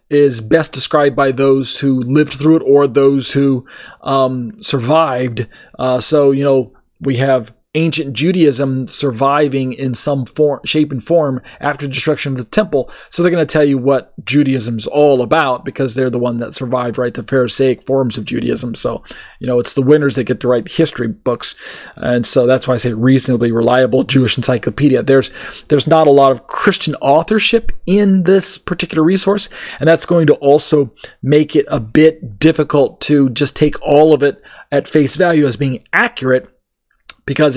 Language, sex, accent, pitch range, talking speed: English, male, American, 130-155 Hz, 185 wpm